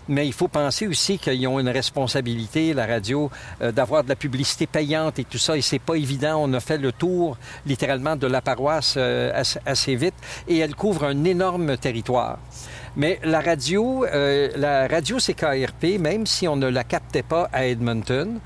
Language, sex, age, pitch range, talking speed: French, male, 60-79, 130-170 Hz, 190 wpm